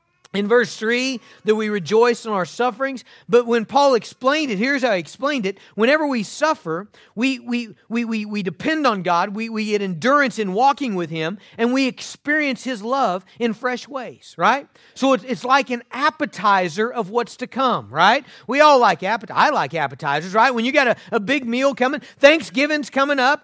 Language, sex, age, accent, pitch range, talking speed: English, male, 40-59, American, 220-270 Hz, 195 wpm